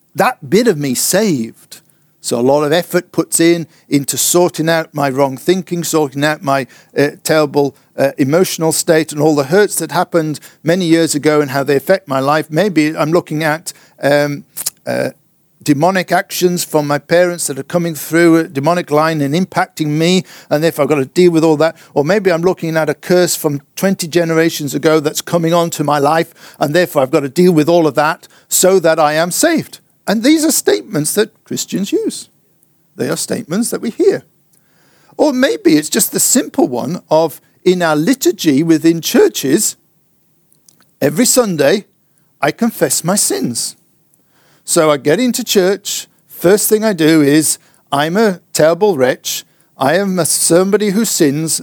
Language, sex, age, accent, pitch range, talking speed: English, male, 50-69, British, 150-185 Hz, 180 wpm